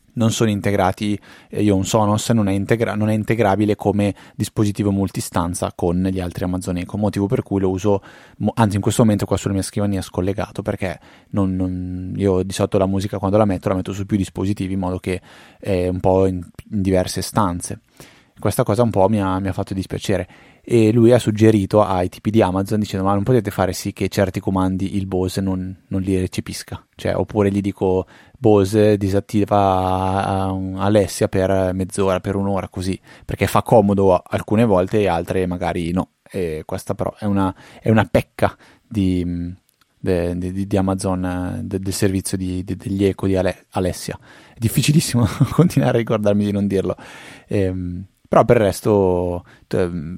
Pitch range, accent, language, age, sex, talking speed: 95-105 Hz, native, Italian, 20-39, male, 180 wpm